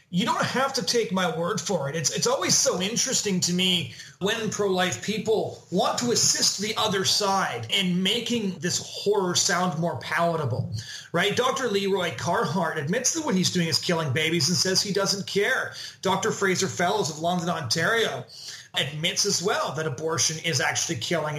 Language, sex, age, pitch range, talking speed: English, male, 30-49, 170-200 Hz, 175 wpm